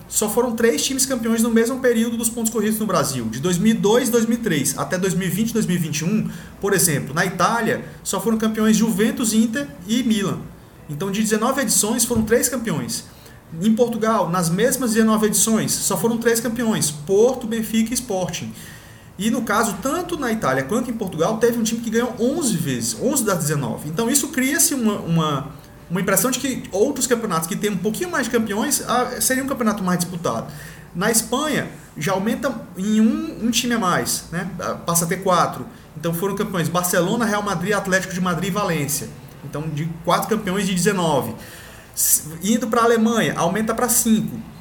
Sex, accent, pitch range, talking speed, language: male, Brazilian, 175-230 Hz, 180 wpm, Portuguese